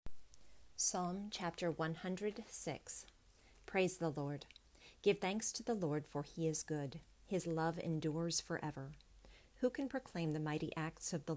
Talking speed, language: 140 wpm, English